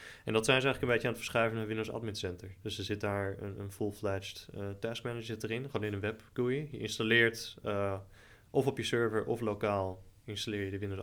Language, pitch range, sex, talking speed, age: Dutch, 100-115 Hz, male, 240 wpm, 20-39